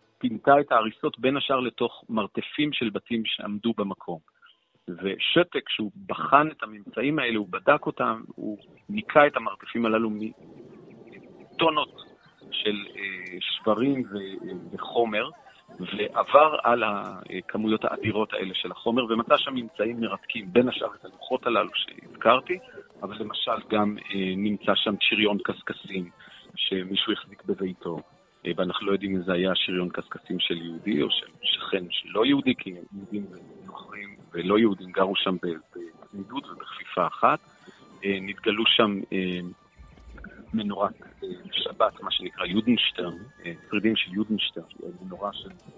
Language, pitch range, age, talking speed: Hebrew, 95-115 Hz, 40-59, 125 wpm